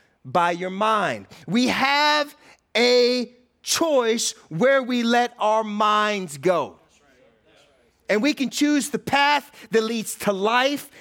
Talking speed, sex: 125 wpm, male